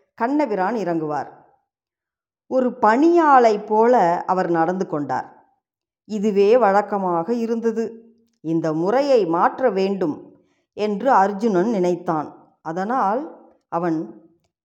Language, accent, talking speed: Tamil, native, 80 wpm